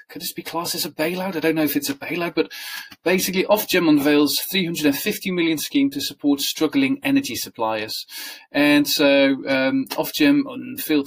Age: 30-49